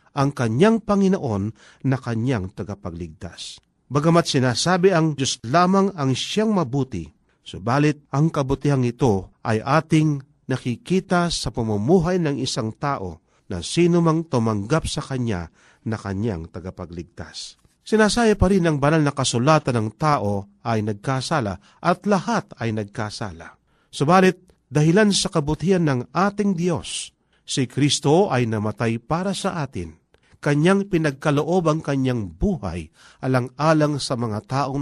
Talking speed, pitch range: 120 wpm, 115-170 Hz